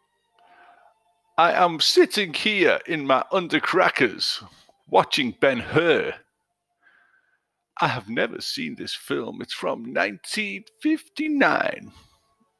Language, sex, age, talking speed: English, male, 50-69, 85 wpm